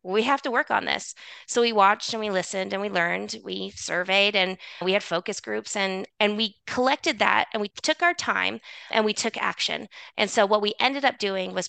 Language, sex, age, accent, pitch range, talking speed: English, female, 20-39, American, 180-210 Hz, 225 wpm